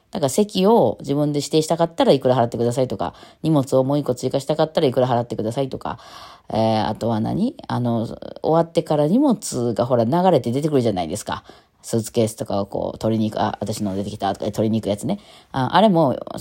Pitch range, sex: 115-170 Hz, female